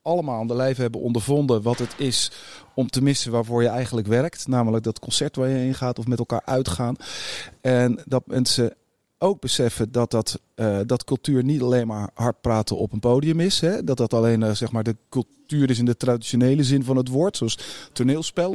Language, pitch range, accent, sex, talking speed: Dutch, 120-140 Hz, Dutch, male, 195 wpm